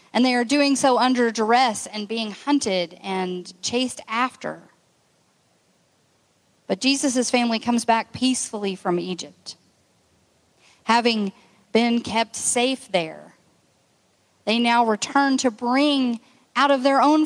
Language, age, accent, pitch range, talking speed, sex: English, 40-59, American, 225-290 Hz, 120 wpm, female